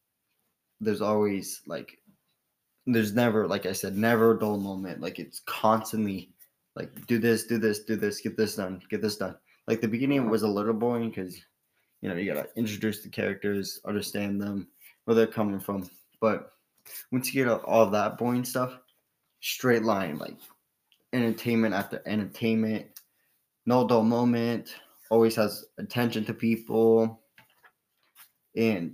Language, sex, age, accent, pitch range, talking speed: English, male, 20-39, American, 105-115 Hz, 150 wpm